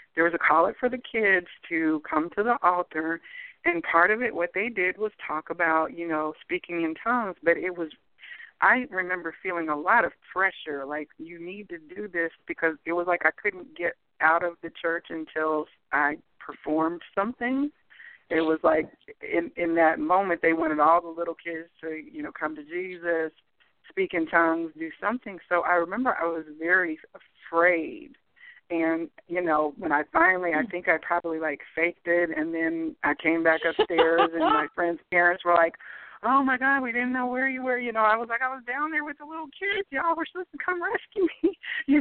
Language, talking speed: English, 205 wpm